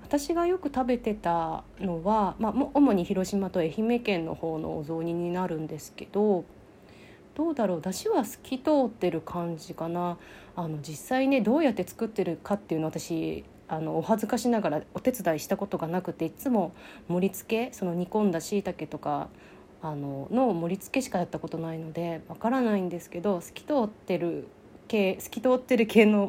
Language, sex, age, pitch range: Japanese, female, 30-49, 175-225 Hz